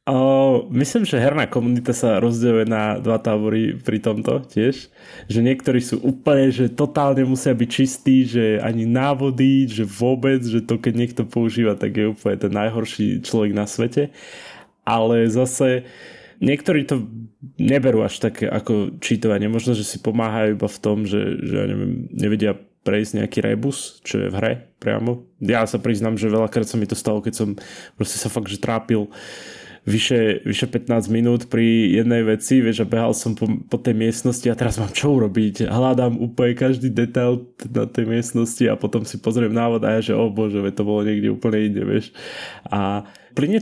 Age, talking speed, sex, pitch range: 20-39, 180 wpm, male, 110-125 Hz